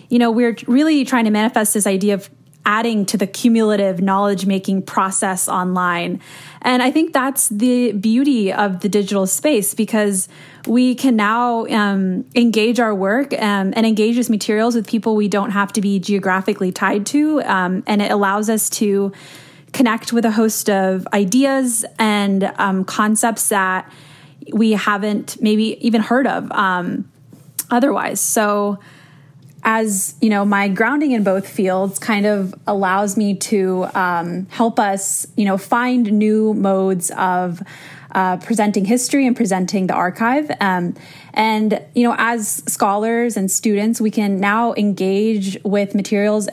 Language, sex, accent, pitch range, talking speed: English, female, American, 190-230 Hz, 150 wpm